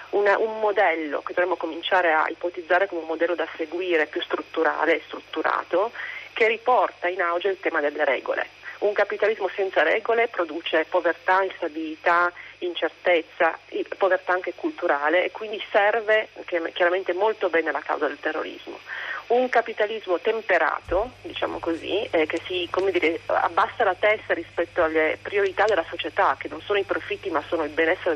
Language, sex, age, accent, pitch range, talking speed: Italian, female, 40-59, native, 160-195 Hz, 155 wpm